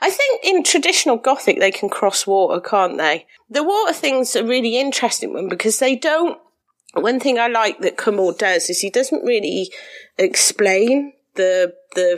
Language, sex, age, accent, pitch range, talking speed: English, female, 40-59, British, 180-270 Hz, 175 wpm